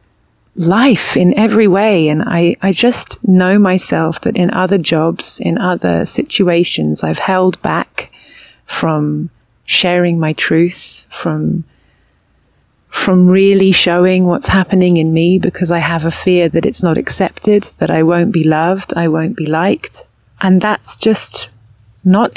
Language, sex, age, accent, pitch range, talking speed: English, female, 30-49, British, 160-195 Hz, 145 wpm